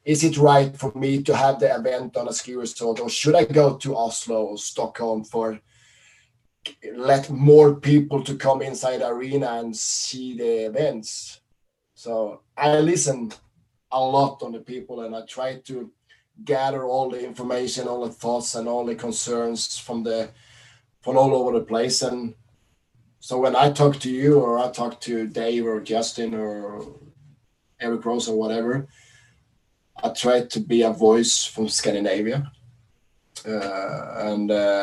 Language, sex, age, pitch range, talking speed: English, male, 20-39, 110-130 Hz, 160 wpm